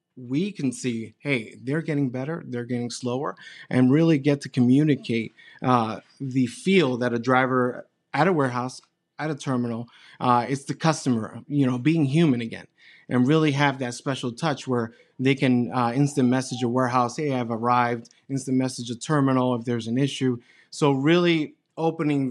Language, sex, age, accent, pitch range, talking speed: English, male, 30-49, American, 120-140 Hz, 170 wpm